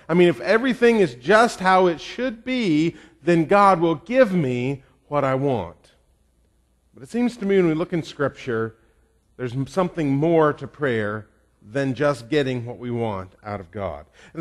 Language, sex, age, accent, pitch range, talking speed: English, male, 40-59, American, 130-195 Hz, 180 wpm